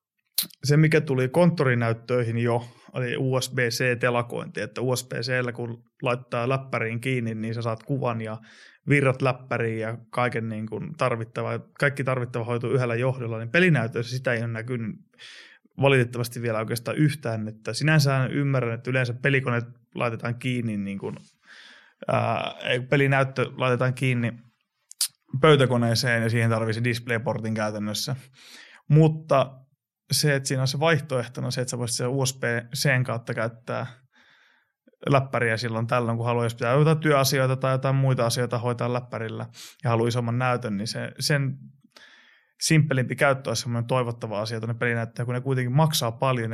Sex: male